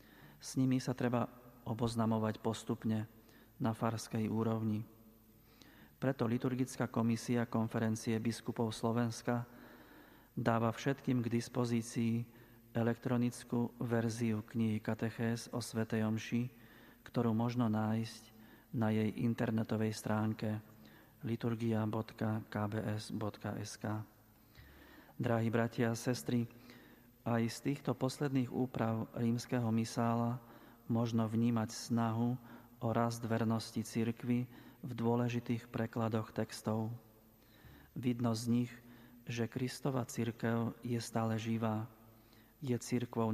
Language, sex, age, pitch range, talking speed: Slovak, male, 40-59, 110-120 Hz, 90 wpm